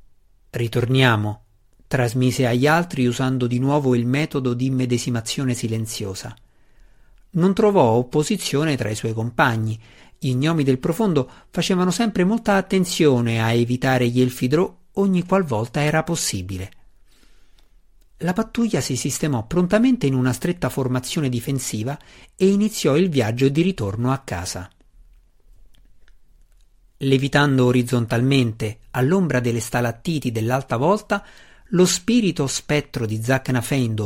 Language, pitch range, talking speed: Italian, 120-175 Hz, 115 wpm